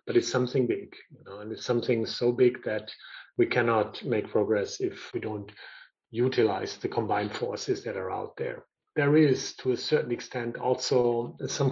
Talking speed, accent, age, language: 180 wpm, German, 40-59, English